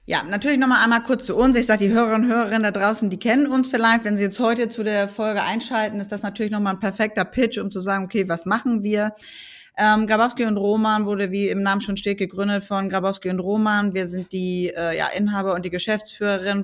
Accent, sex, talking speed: German, female, 235 wpm